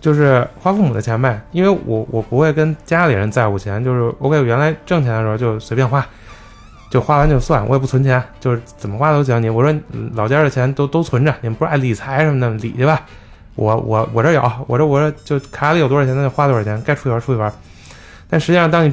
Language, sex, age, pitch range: Chinese, male, 20-39, 110-145 Hz